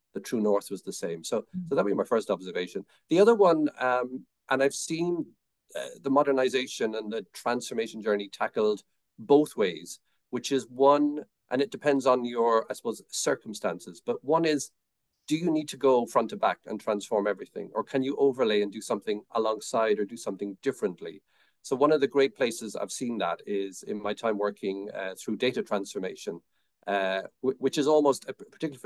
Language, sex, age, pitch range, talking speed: English, male, 40-59, 105-140 Hz, 190 wpm